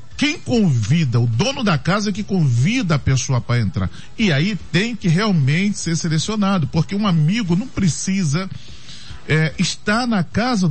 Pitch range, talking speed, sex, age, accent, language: 135-190 Hz, 155 wpm, male, 40-59, Brazilian, Portuguese